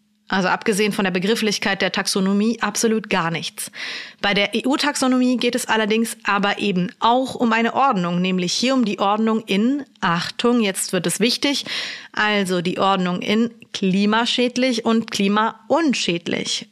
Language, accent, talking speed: German, German, 145 wpm